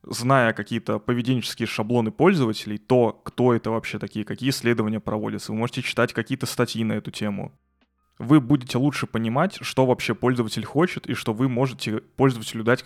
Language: Russian